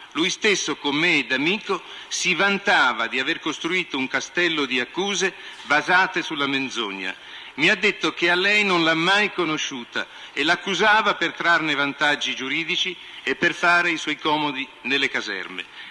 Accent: native